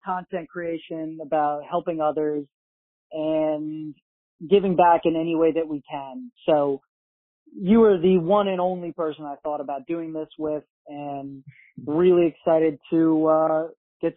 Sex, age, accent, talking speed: male, 30-49, American, 145 wpm